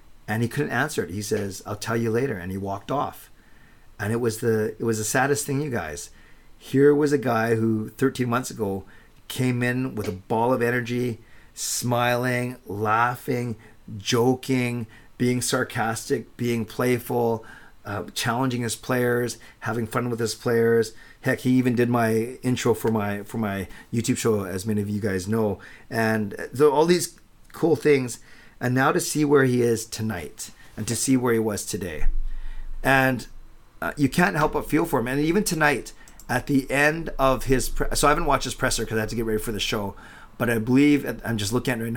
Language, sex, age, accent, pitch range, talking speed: English, male, 40-59, American, 110-145 Hz, 195 wpm